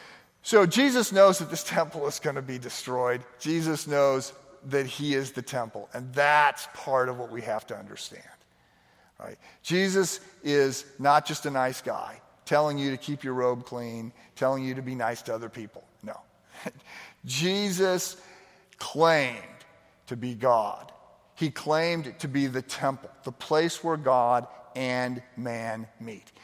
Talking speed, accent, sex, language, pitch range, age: 155 wpm, American, male, English, 120-155 Hz, 50-69